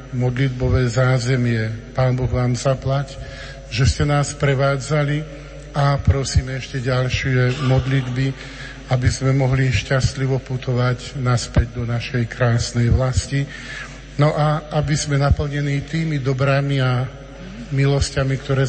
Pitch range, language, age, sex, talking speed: 130-140 Hz, Slovak, 50-69, male, 110 wpm